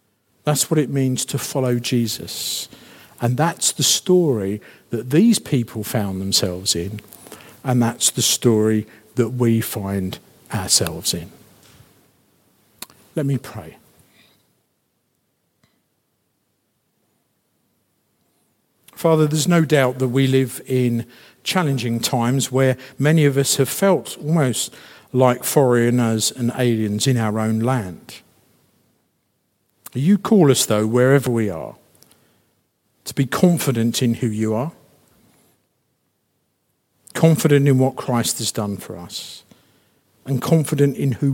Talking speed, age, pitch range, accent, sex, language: 115 wpm, 50-69, 110-140 Hz, British, male, English